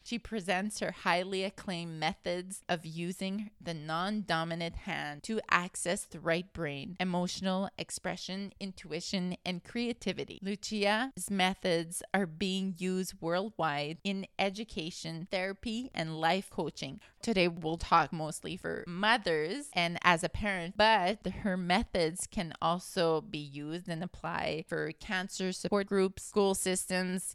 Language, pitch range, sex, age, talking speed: English, 175-215 Hz, female, 20-39, 125 wpm